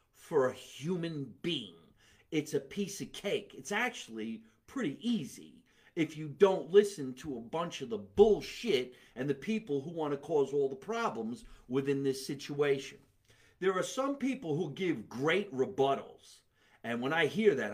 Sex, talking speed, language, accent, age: male, 165 wpm, English, American, 50-69